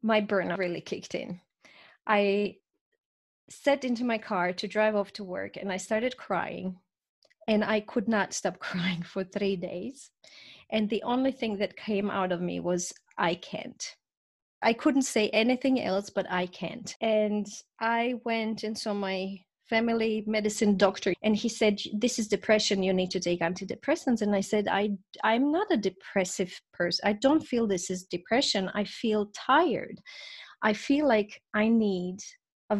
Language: English